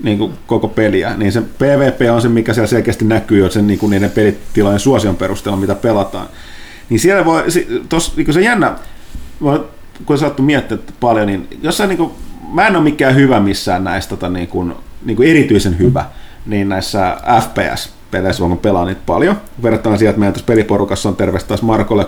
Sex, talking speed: male, 180 wpm